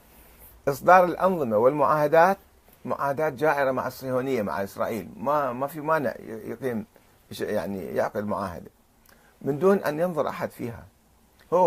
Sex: male